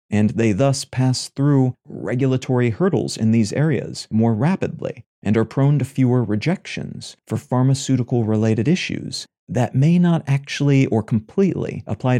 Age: 40-59